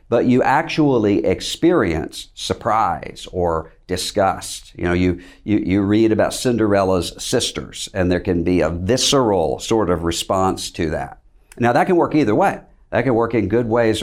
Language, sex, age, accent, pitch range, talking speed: English, male, 60-79, American, 90-120 Hz, 165 wpm